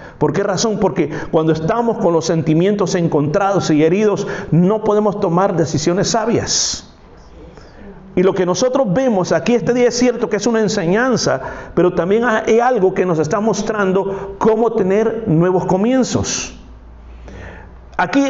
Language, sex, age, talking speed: Spanish, male, 50-69, 145 wpm